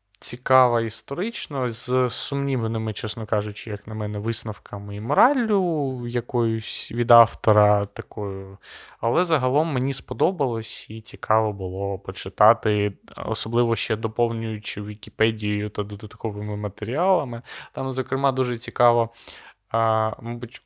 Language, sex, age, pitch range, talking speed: Ukrainian, male, 20-39, 115-145 Hz, 105 wpm